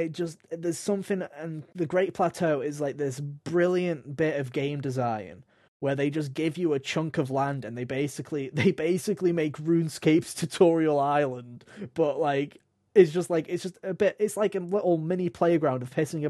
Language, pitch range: English, 130-170 Hz